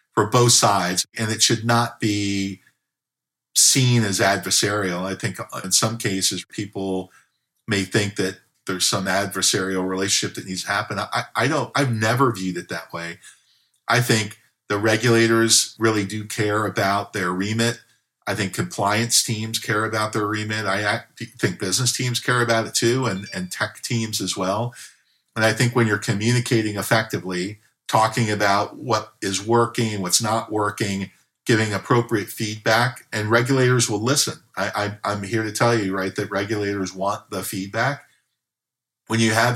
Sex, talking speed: male, 160 wpm